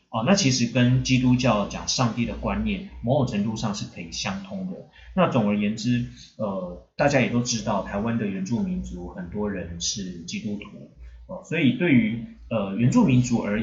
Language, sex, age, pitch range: Chinese, male, 30-49, 105-130 Hz